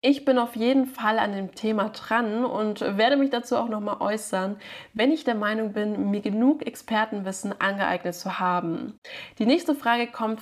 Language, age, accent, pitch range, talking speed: German, 20-39, German, 200-255 Hz, 185 wpm